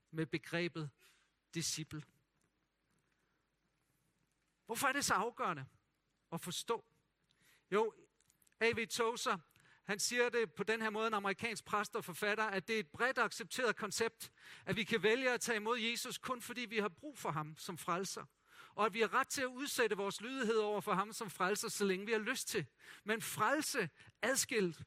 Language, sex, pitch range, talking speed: Danish, male, 170-230 Hz, 175 wpm